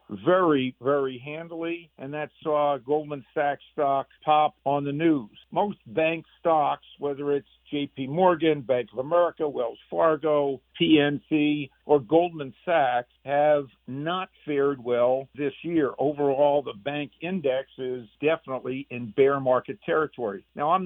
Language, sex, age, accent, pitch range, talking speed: English, male, 50-69, American, 135-155 Hz, 135 wpm